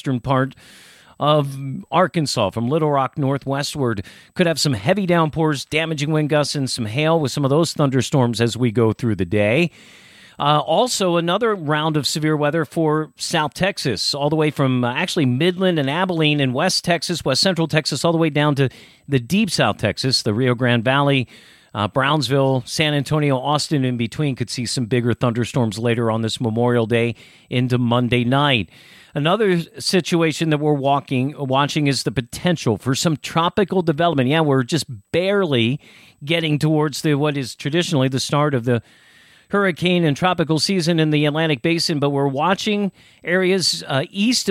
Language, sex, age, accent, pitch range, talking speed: English, male, 40-59, American, 130-165 Hz, 175 wpm